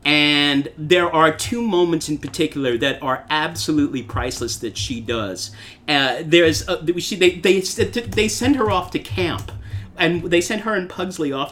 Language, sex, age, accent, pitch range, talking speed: English, male, 40-59, American, 140-175 Hz, 170 wpm